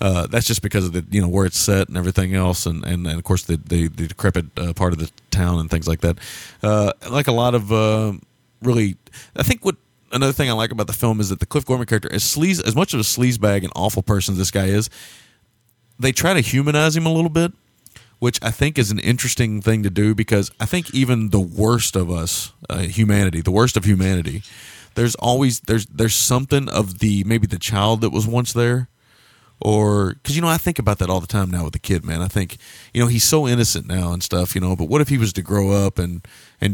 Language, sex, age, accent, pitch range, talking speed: English, male, 30-49, American, 95-125 Hz, 250 wpm